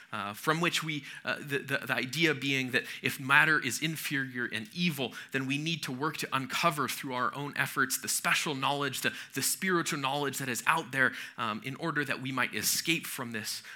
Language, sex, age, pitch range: English, male, 30-49, 125-160 Hz